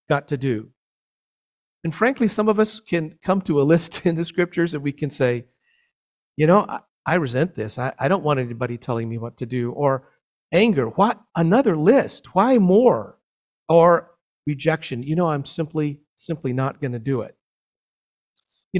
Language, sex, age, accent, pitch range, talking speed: English, male, 50-69, American, 135-175 Hz, 180 wpm